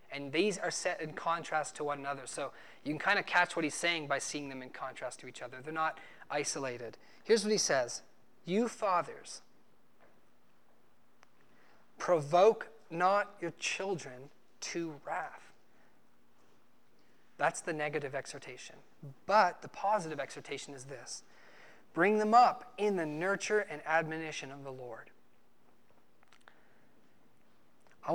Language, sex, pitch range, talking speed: English, male, 150-195 Hz, 135 wpm